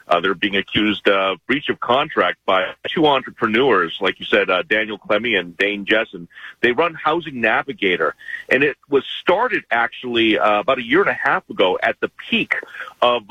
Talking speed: 185 wpm